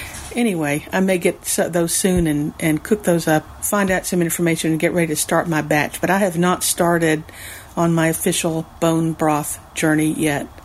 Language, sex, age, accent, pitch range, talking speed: English, female, 50-69, American, 155-180 Hz, 190 wpm